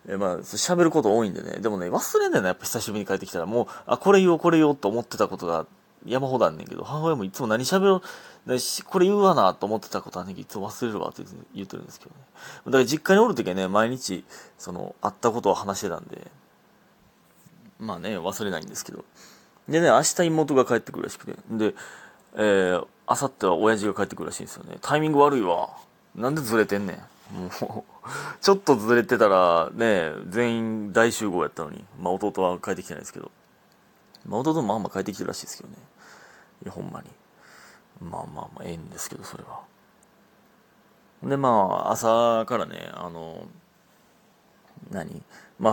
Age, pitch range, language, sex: 30-49, 100-150 Hz, Japanese, male